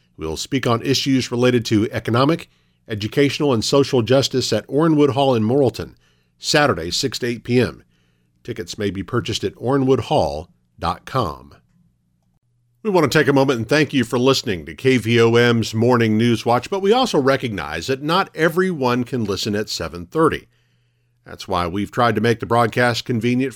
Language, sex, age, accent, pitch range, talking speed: English, male, 50-69, American, 105-140 Hz, 160 wpm